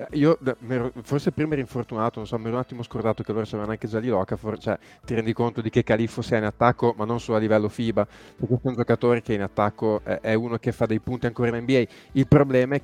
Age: 20-39